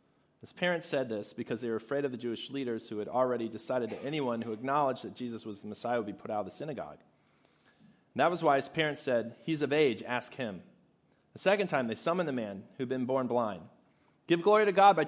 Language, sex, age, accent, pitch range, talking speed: English, male, 30-49, American, 125-185 Hz, 235 wpm